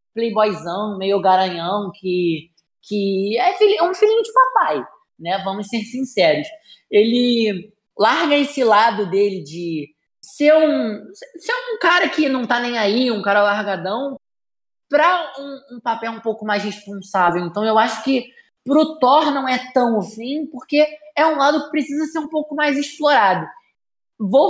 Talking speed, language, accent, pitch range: 160 wpm, Portuguese, Brazilian, 200-270 Hz